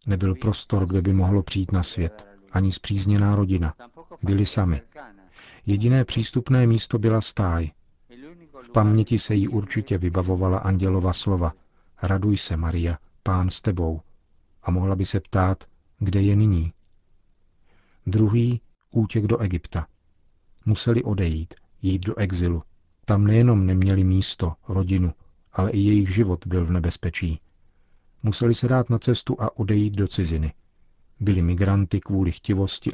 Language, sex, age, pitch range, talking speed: Czech, male, 40-59, 90-110 Hz, 135 wpm